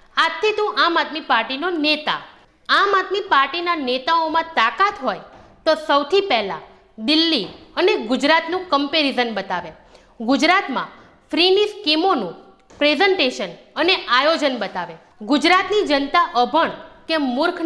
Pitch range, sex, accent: 260-350 Hz, female, native